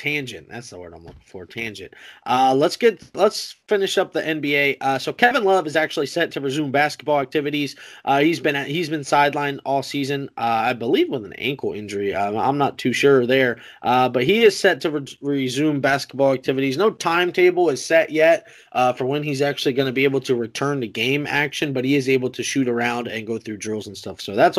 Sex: male